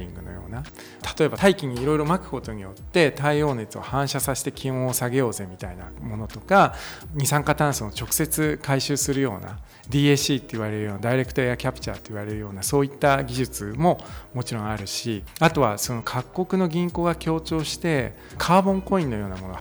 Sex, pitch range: male, 115-155 Hz